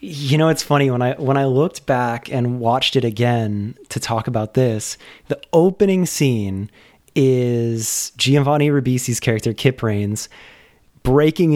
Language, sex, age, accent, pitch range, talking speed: English, male, 20-39, American, 115-145 Hz, 145 wpm